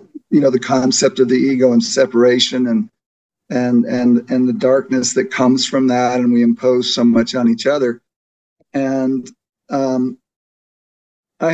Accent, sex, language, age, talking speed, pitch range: American, male, English, 50-69, 155 wpm, 125-155 Hz